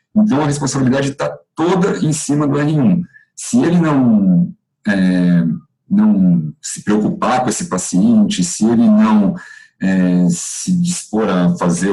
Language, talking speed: Portuguese, 135 wpm